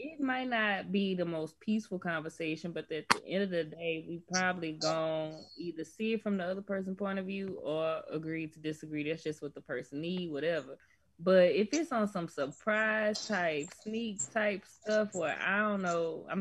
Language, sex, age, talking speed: English, female, 20-39, 200 wpm